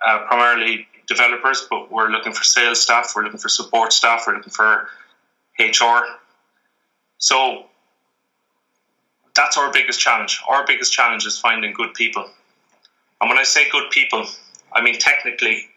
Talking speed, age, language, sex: 150 wpm, 20-39, English, male